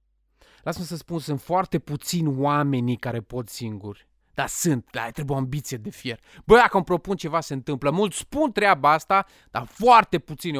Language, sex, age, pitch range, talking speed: Romanian, male, 20-39, 130-180 Hz, 185 wpm